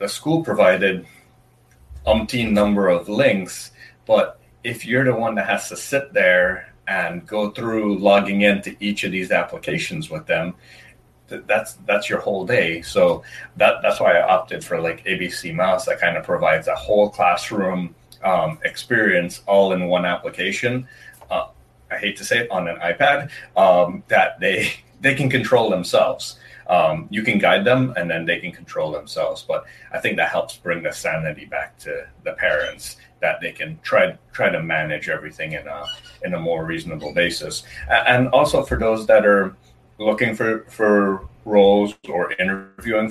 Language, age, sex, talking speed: English, 30-49, male, 170 wpm